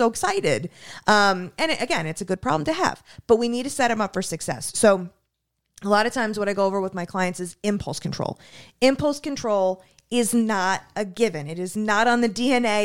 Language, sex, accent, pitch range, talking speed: English, female, American, 180-225 Hz, 215 wpm